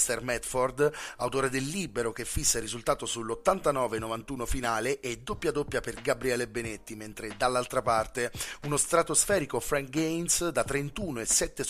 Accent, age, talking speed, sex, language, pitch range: native, 30-49, 135 wpm, male, Italian, 115-135 Hz